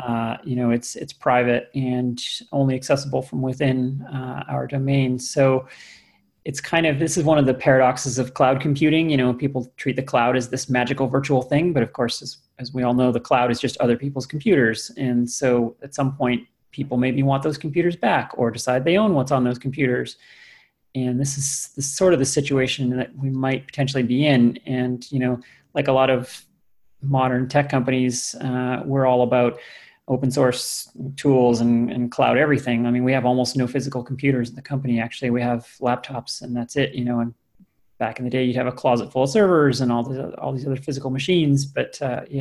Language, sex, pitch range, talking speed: English, male, 125-140 Hz, 210 wpm